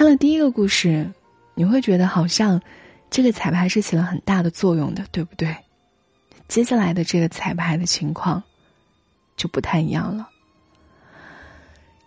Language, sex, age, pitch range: Chinese, female, 20-39, 160-195 Hz